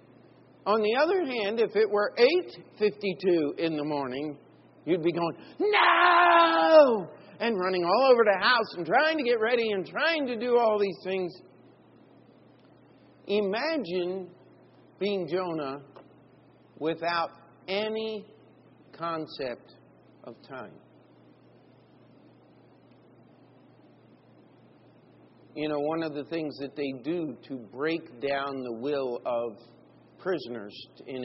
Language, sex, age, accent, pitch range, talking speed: English, male, 50-69, American, 130-185 Hz, 115 wpm